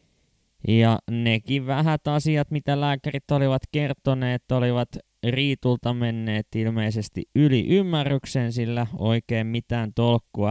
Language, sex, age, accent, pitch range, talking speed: Finnish, male, 20-39, native, 105-130 Hz, 105 wpm